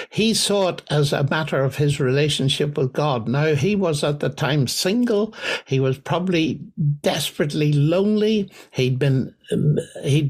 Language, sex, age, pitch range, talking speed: English, male, 60-79, 145-190 Hz, 150 wpm